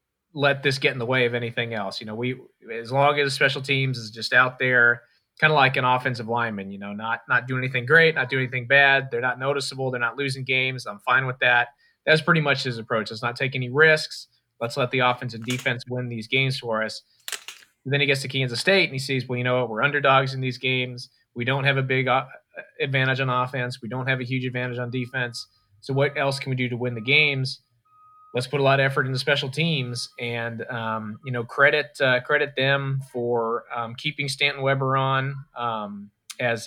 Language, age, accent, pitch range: English, 20-39, American, 115-135 Hz